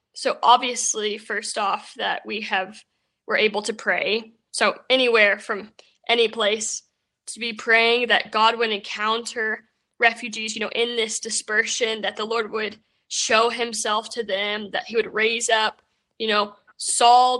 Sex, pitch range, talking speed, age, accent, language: female, 210-240 Hz, 155 wpm, 10-29, American, English